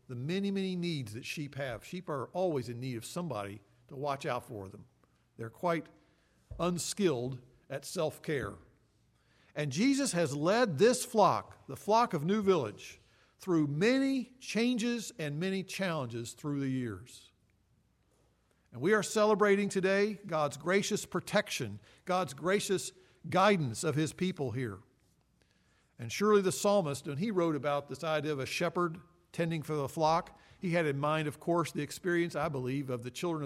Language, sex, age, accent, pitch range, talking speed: English, male, 50-69, American, 135-190 Hz, 160 wpm